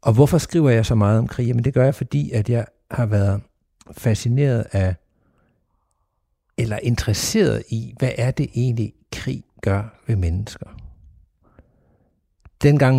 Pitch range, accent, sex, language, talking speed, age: 105-125 Hz, native, male, Danish, 145 wpm, 60-79